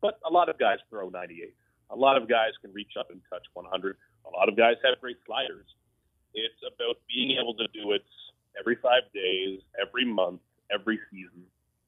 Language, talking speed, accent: English, 190 wpm, American